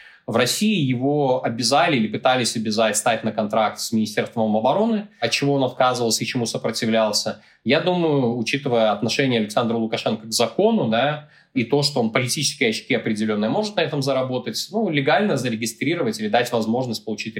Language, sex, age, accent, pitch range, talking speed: Russian, male, 20-39, native, 115-145 Hz, 160 wpm